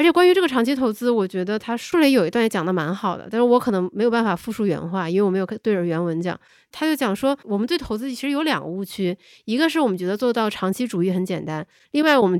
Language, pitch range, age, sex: Chinese, 185-275 Hz, 20-39, female